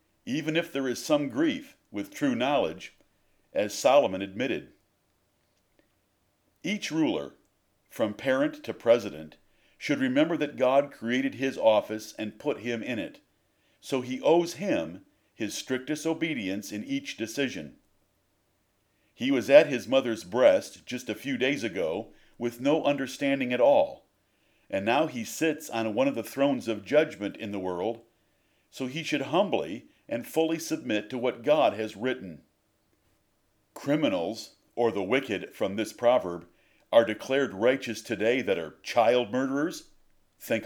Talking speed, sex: 145 wpm, male